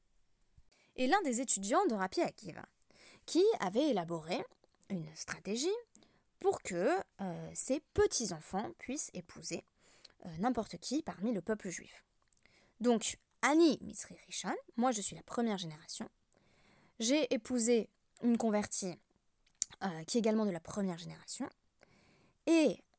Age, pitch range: 20-39, 185-260 Hz